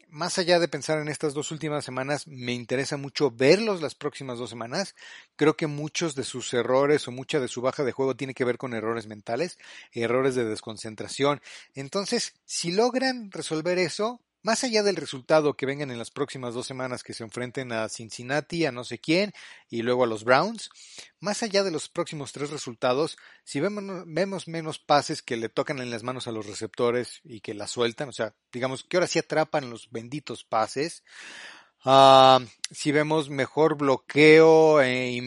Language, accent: Spanish, Mexican